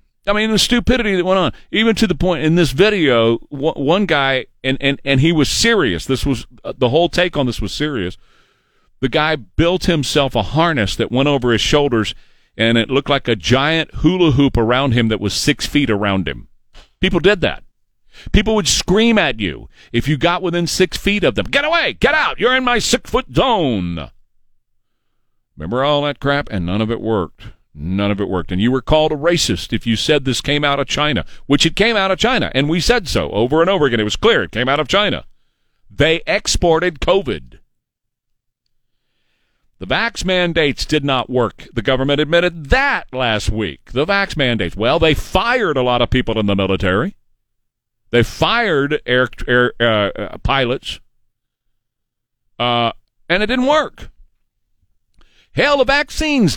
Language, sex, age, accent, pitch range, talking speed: English, male, 40-59, American, 115-175 Hz, 185 wpm